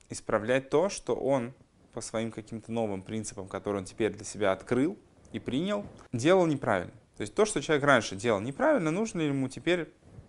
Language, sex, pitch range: Russian, male, 110-150 Hz